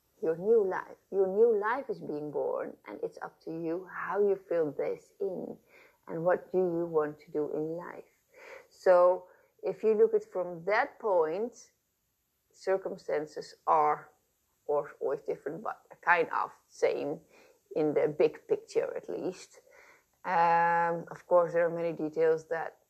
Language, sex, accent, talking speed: English, female, Dutch, 155 wpm